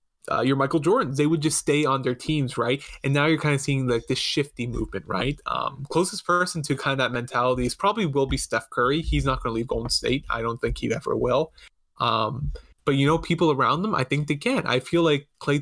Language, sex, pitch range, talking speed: English, male, 125-155 Hz, 250 wpm